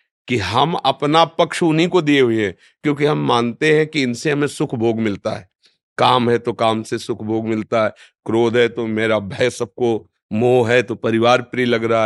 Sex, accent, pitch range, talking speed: male, native, 115-150 Hz, 210 wpm